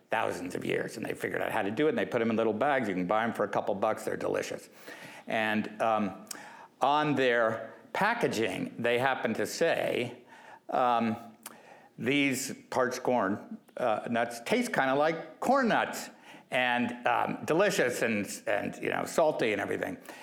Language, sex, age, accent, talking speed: English, male, 60-79, American, 175 wpm